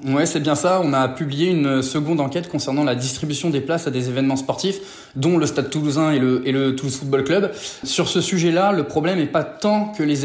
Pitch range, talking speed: 140-185 Hz, 235 wpm